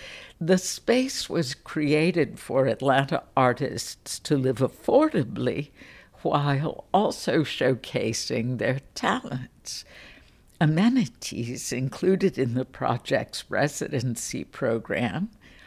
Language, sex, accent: English, female, American